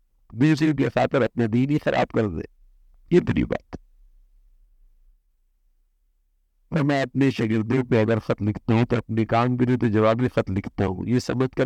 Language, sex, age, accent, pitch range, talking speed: English, male, 60-79, Indian, 85-130 Hz, 100 wpm